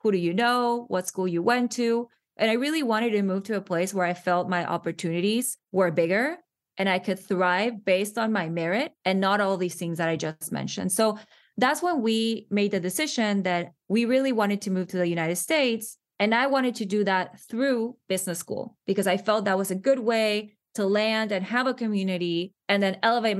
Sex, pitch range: female, 185-240 Hz